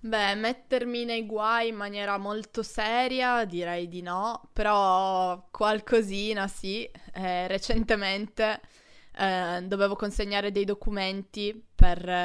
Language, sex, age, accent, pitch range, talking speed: Italian, female, 20-39, native, 185-225 Hz, 105 wpm